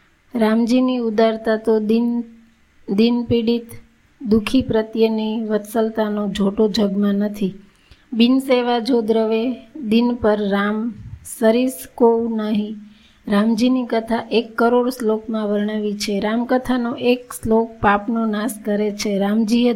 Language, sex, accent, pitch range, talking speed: Gujarati, female, native, 210-235 Hz, 100 wpm